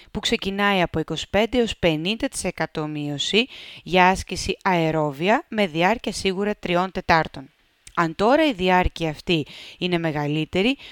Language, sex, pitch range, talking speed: Greek, female, 160-205 Hz, 120 wpm